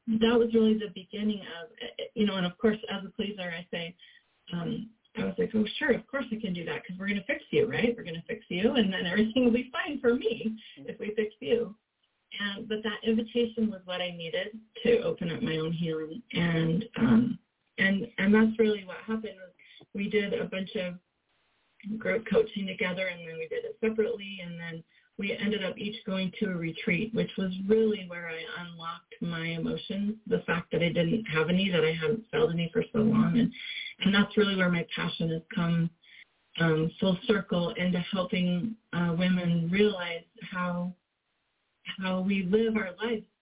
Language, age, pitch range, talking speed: English, 30-49, 175-225 Hz, 200 wpm